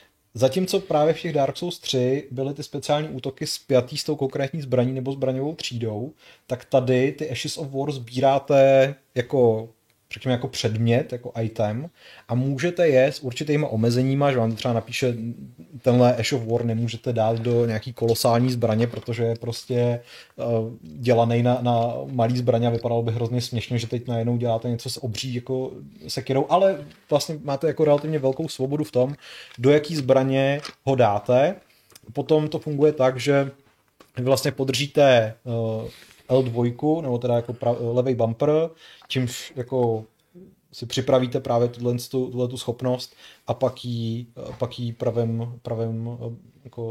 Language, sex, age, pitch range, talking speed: Czech, male, 30-49, 115-135 Hz, 155 wpm